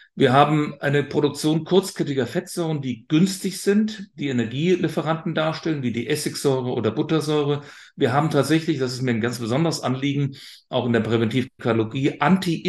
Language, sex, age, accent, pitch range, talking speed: German, male, 40-59, German, 120-150 Hz, 150 wpm